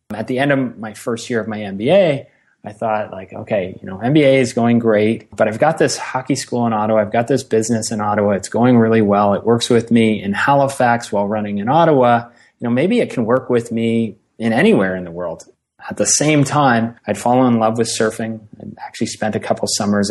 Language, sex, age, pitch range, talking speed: English, male, 30-49, 105-120 Hz, 230 wpm